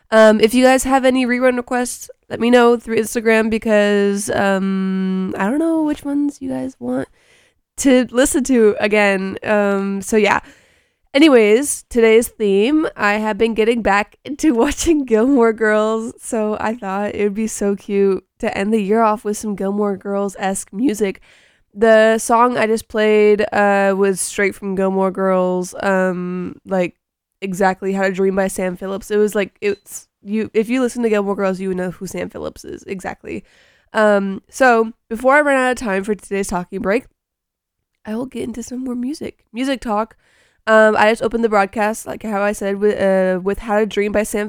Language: English